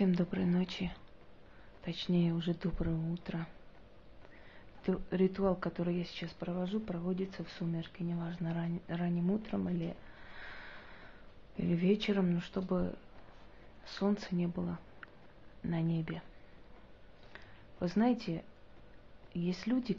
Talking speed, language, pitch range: 100 wpm, Russian, 170-190 Hz